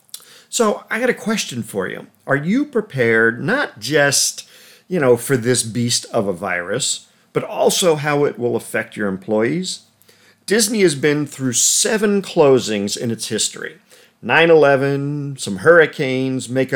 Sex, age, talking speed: male, 50-69, 145 wpm